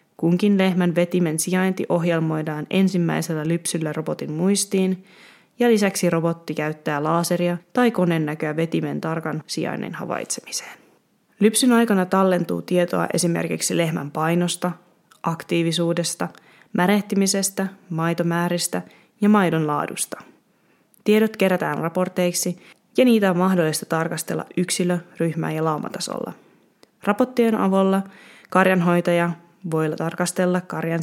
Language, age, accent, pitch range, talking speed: Finnish, 20-39, native, 165-195 Hz, 95 wpm